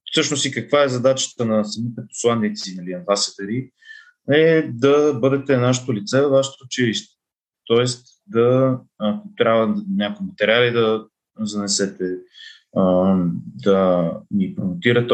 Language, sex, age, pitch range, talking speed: Bulgarian, male, 30-49, 105-130 Hz, 125 wpm